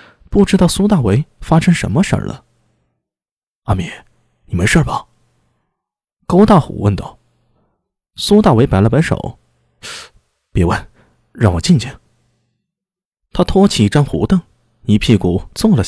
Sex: male